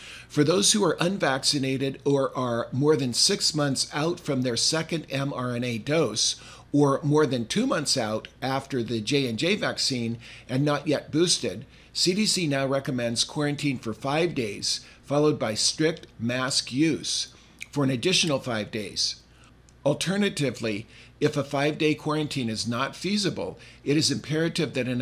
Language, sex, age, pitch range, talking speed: English, male, 50-69, 120-150 Hz, 145 wpm